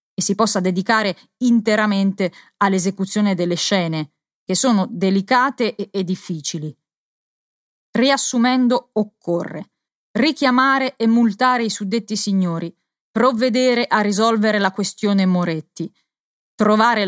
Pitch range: 190-235 Hz